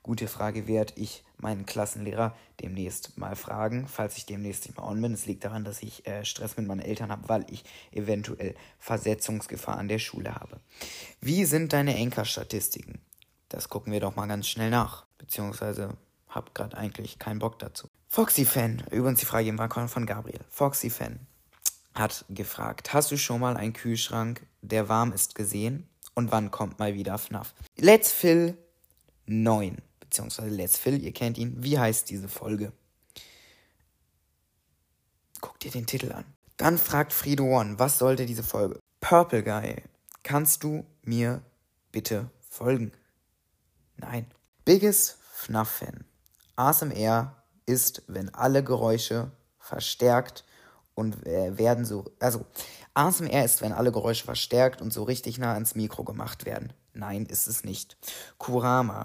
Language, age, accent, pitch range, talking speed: German, 20-39, German, 105-125 Hz, 150 wpm